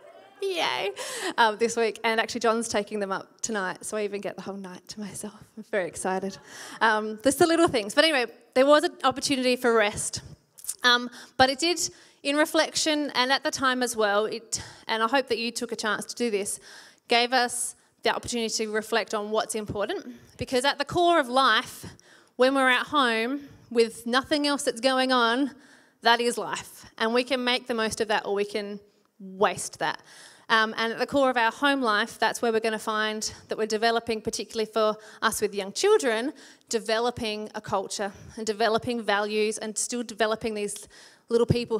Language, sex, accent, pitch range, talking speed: English, female, Australian, 210-250 Hz, 195 wpm